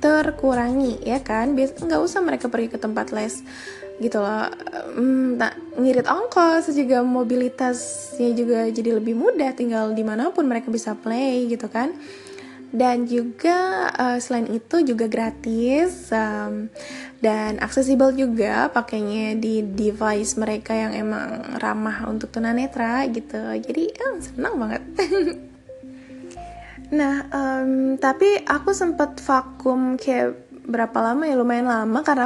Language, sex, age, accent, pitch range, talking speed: English, female, 20-39, Indonesian, 230-275 Hz, 120 wpm